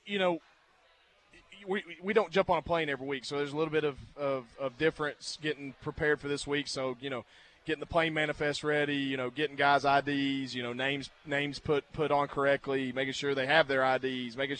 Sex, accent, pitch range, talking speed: male, American, 135-155 Hz, 220 wpm